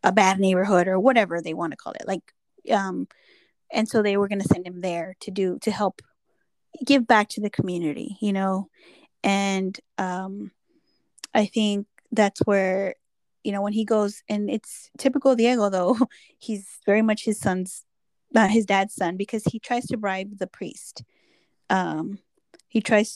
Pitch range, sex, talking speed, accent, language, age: 195-235 Hz, female, 175 wpm, American, English, 10-29